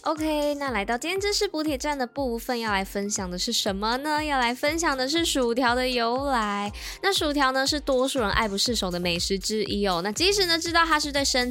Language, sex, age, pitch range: Chinese, female, 10-29, 195-260 Hz